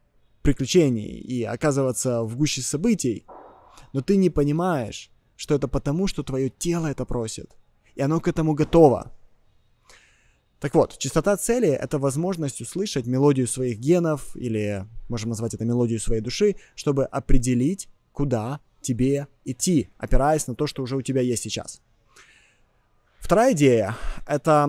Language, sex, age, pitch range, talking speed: Russian, male, 20-39, 130-160 Hz, 140 wpm